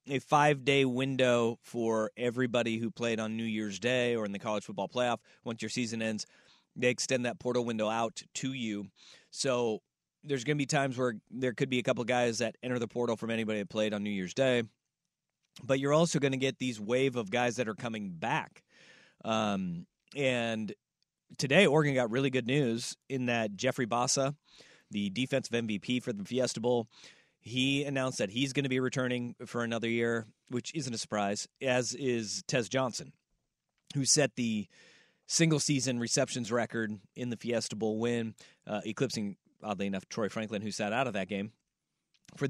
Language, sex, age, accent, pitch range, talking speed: English, male, 30-49, American, 110-135 Hz, 185 wpm